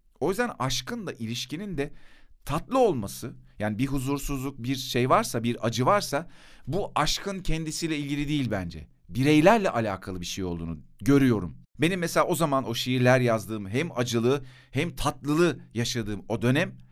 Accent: native